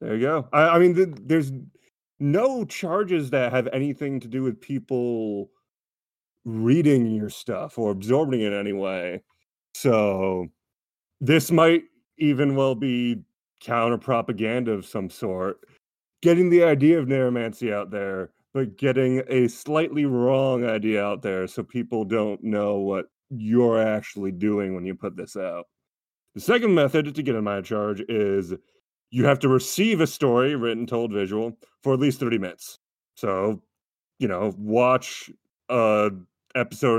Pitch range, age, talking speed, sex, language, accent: 105-140 Hz, 30-49, 150 wpm, male, English, American